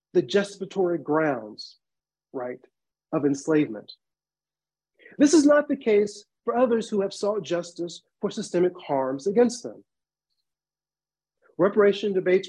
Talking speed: 110 wpm